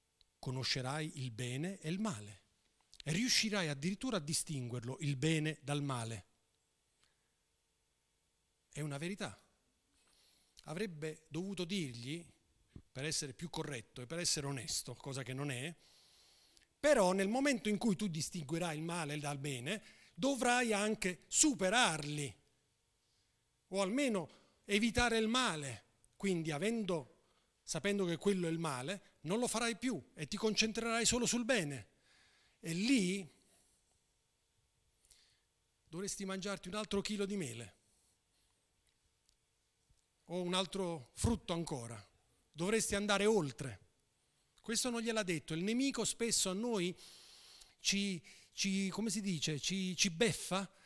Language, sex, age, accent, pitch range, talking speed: Italian, male, 40-59, native, 140-210 Hz, 120 wpm